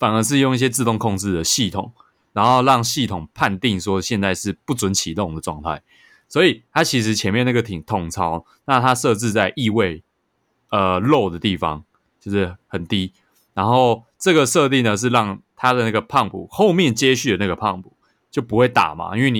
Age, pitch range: 20-39, 100-130 Hz